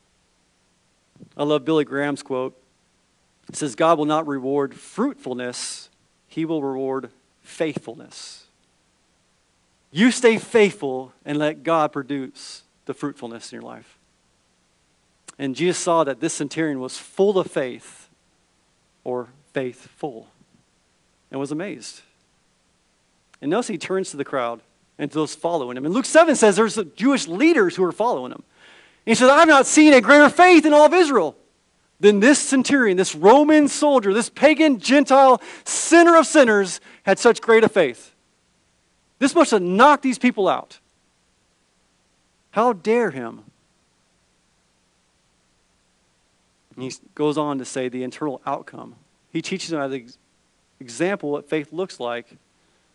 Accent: American